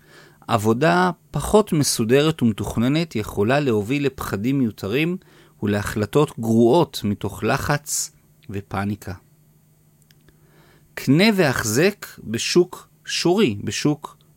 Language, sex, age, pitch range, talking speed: Hebrew, male, 40-59, 115-160 Hz, 75 wpm